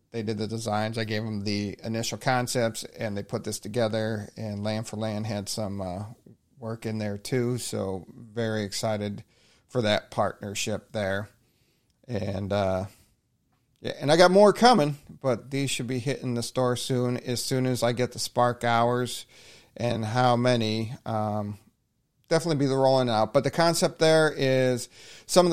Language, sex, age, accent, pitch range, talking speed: English, male, 40-59, American, 110-130 Hz, 170 wpm